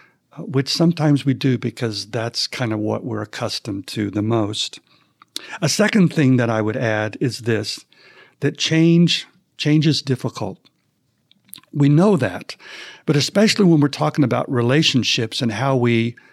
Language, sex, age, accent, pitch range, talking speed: English, male, 60-79, American, 115-150 Hz, 150 wpm